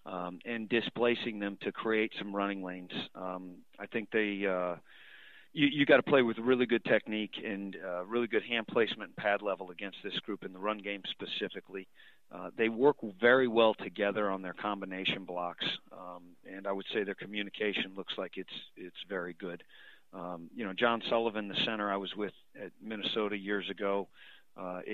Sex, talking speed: male, 185 wpm